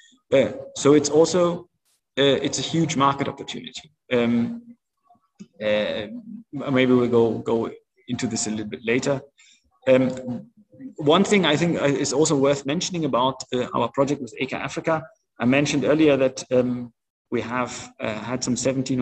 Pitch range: 125-160 Hz